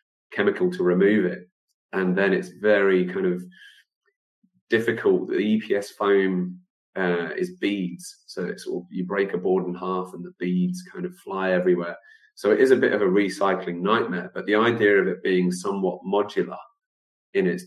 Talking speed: 175 wpm